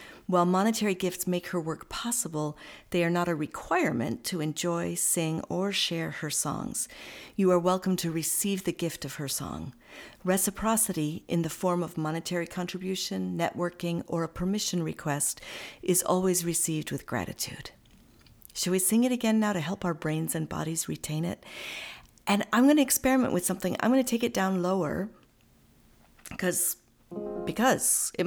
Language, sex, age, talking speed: English, female, 50-69, 165 wpm